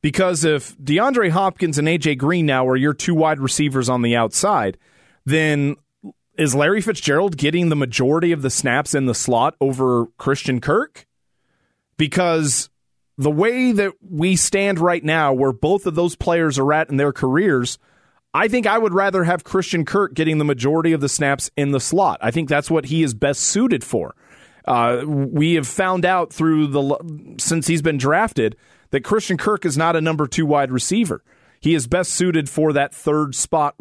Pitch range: 135-170 Hz